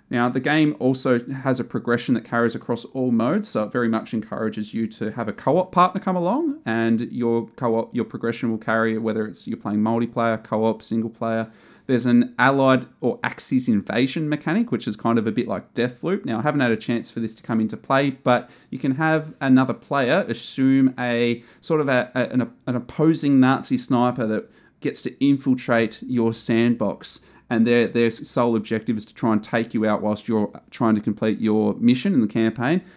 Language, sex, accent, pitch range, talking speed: English, male, Australian, 110-135 Hz, 205 wpm